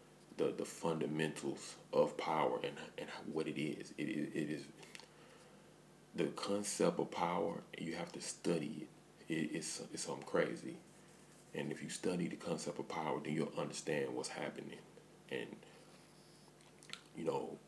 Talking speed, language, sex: 140 wpm, English, male